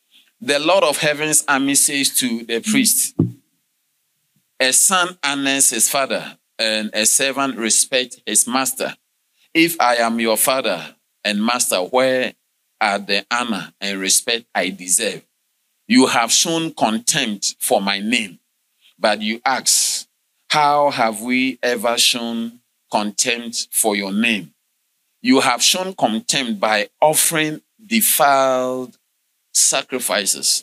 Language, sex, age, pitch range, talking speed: English, male, 40-59, 115-145 Hz, 120 wpm